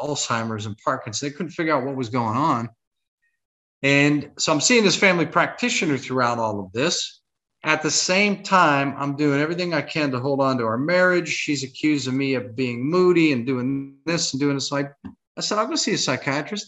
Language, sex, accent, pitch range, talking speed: English, male, American, 120-150 Hz, 205 wpm